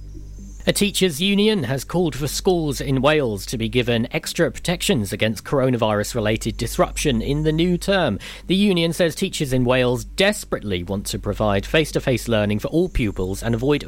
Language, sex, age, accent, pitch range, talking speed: English, male, 40-59, British, 110-150 Hz, 165 wpm